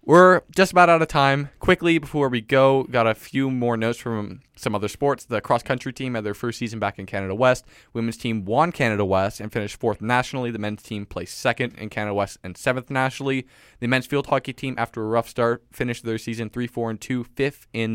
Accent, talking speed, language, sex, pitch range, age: American, 225 wpm, English, male, 105-130 Hz, 20-39